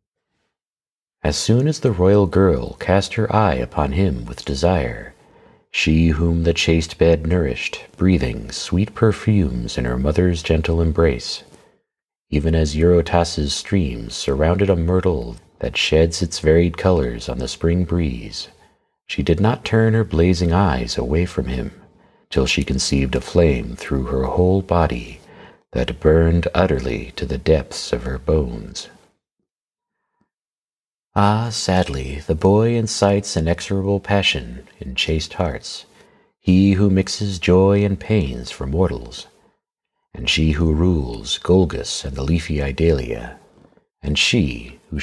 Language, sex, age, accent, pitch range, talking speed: English, male, 50-69, American, 75-95 Hz, 135 wpm